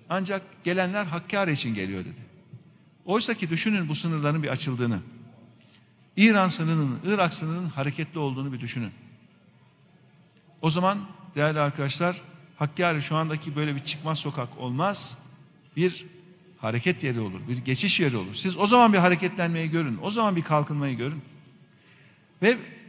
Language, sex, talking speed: Turkish, male, 140 wpm